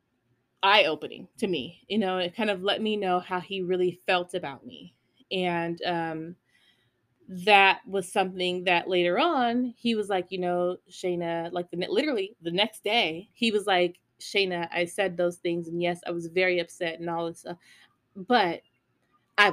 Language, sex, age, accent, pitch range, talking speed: English, female, 20-39, American, 175-255 Hz, 180 wpm